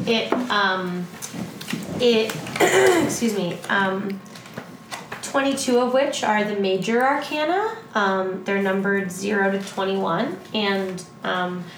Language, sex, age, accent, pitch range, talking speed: English, female, 20-39, American, 185-220 Hz, 105 wpm